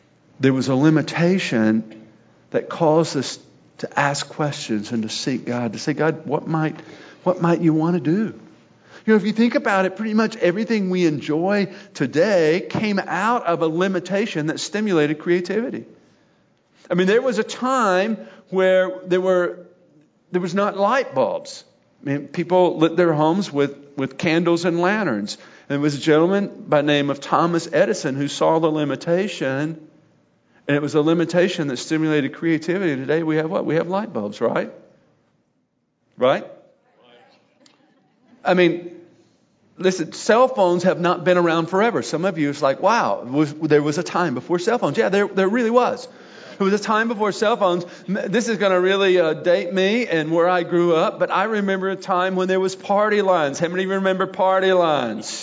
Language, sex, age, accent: English, male, 50-69, American